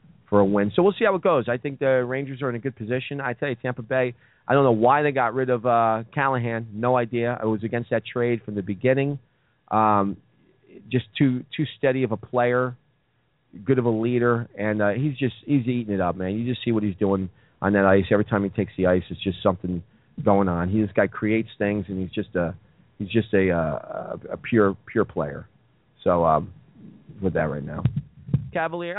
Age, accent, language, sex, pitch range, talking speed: 40-59, American, English, male, 100-135 Hz, 225 wpm